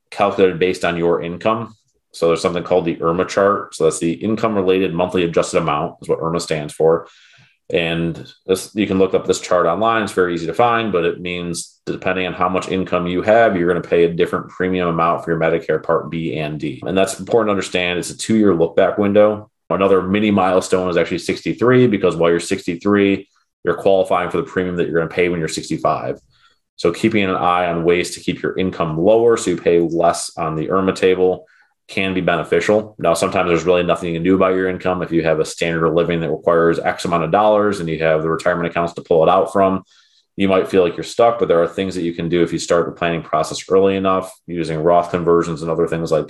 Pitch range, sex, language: 85-95 Hz, male, English